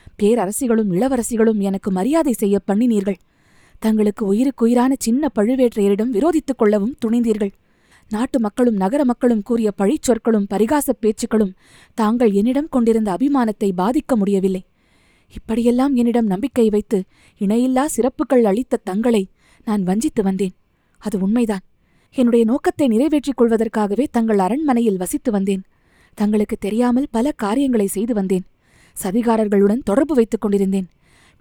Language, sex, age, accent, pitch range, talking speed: Tamil, female, 20-39, native, 205-250 Hz, 110 wpm